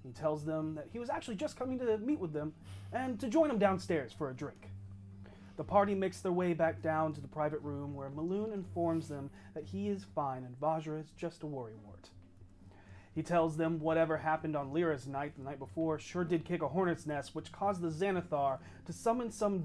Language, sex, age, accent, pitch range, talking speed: English, male, 30-49, American, 125-170 Hz, 215 wpm